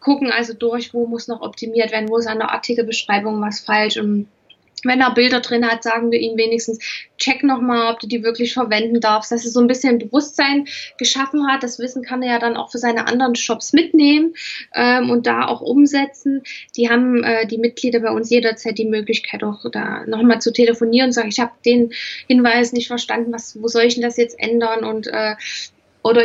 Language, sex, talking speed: German, female, 215 wpm